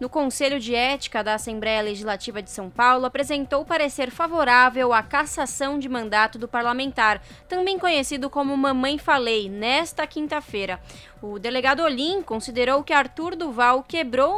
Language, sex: Portuguese, female